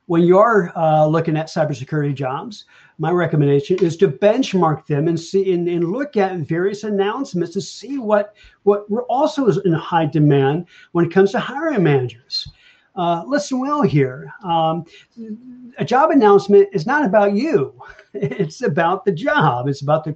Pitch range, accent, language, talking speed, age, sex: 160-220 Hz, American, English, 165 wpm, 50-69, male